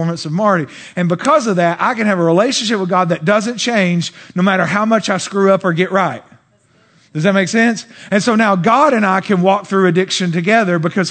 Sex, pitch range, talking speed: male, 155-200 Hz, 225 wpm